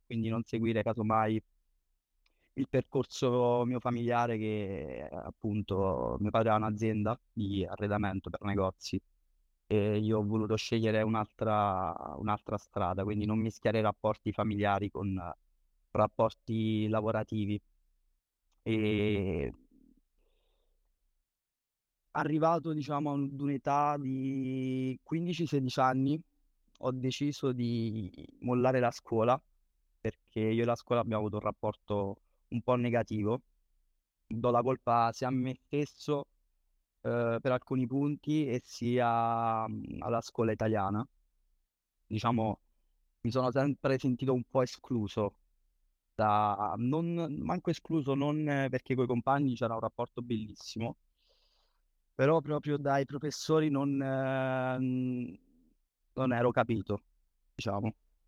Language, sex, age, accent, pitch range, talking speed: Italian, male, 20-39, native, 100-130 Hz, 110 wpm